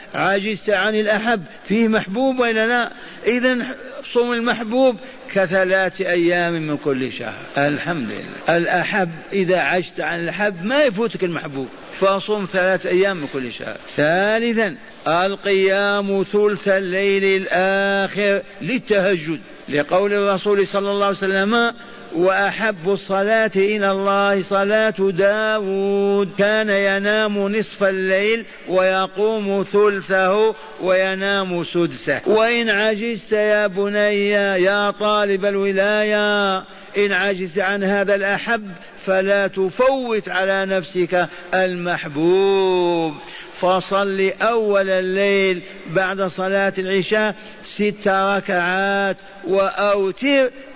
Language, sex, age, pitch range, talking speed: Arabic, male, 50-69, 190-210 Hz, 95 wpm